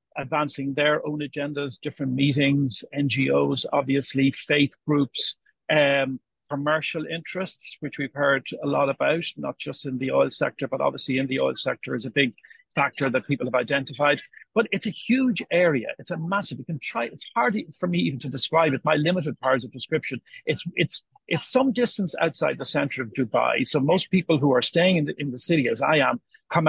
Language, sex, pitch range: English, male, 135-170 Hz